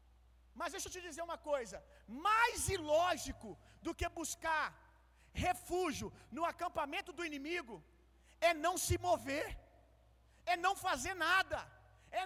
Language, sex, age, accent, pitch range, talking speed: Gujarati, male, 40-59, Brazilian, 320-390 Hz, 125 wpm